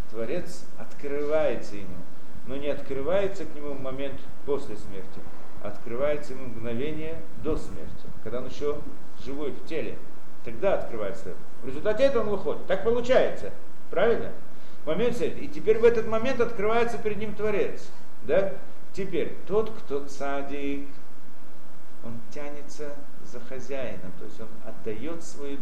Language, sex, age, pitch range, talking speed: Russian, male, 50-69, 135-205 Hz, 135 wpm